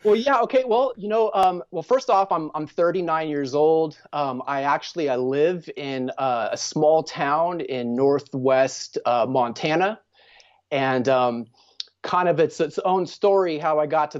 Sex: male